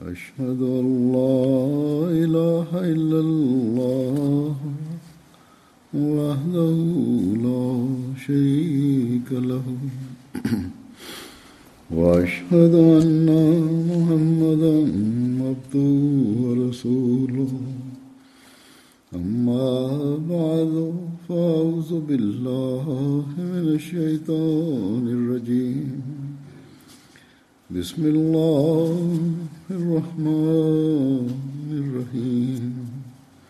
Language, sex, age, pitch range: Tamil, male, 60-79, 125-160 Hz